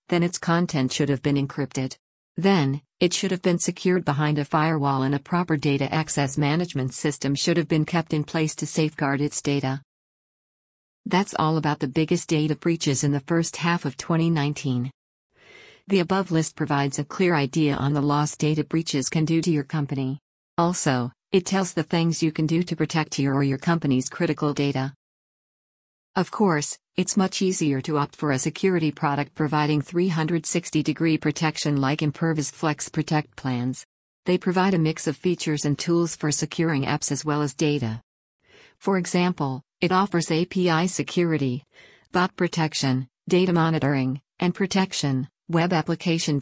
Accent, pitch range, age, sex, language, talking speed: American, 145-170 Hz, 50-69, female, English, 165 wpm